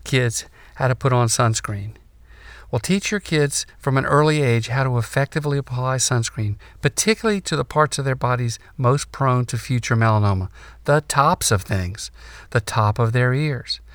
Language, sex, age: English, male, 50-69